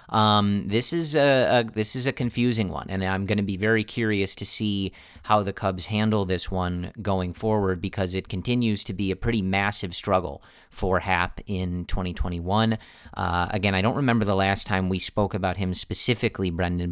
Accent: American